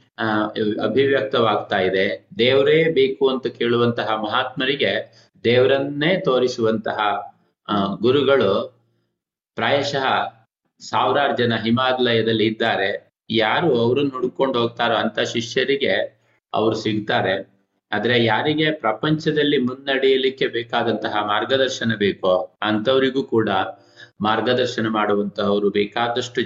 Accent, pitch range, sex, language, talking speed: native, 105-125 Hz, male, Kannada, 80 wpm